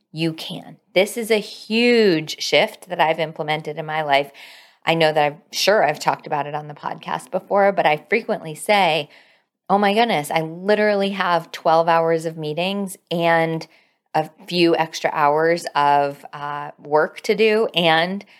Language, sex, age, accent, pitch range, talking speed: English, female, 20-39, American, 160-200 Hz, 165 wpm